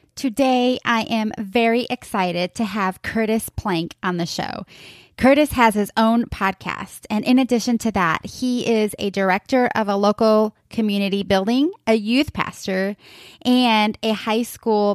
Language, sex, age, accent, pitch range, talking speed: English, female, 20-39, American, 200-255 Hz, 155 wpm